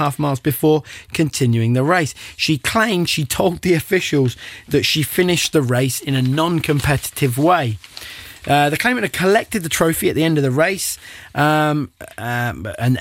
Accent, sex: British, male